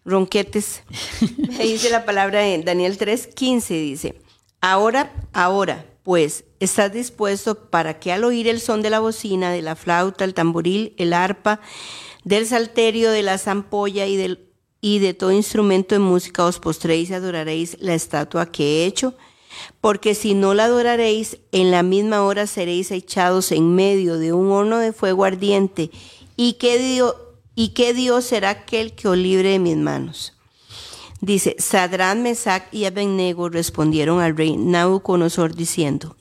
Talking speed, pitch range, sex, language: 160 wpm, 175-215 Hz, female, Spanish